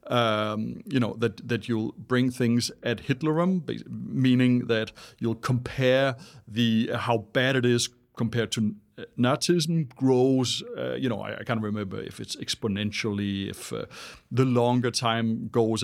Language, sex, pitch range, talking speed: Danish, male, 120-155 Hz, 155 wpm